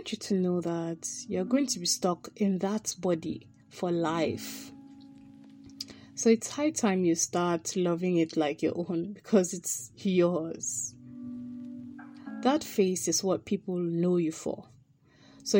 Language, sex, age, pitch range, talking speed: English, female, 20-39, 155-245 Hz, 140 wpm